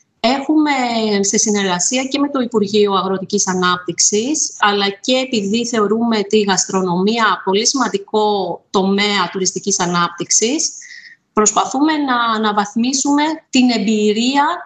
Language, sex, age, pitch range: Greek, female, 30-49, 200-260 Hz